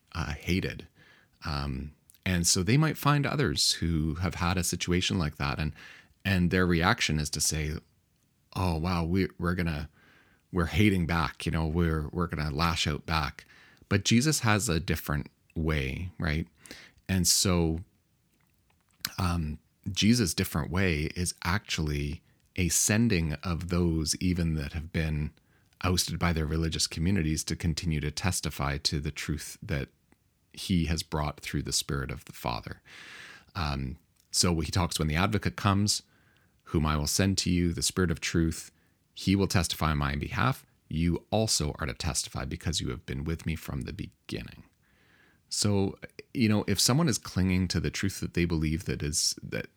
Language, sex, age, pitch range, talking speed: English, male, 30-49, 80-95 Hz, 165 wpm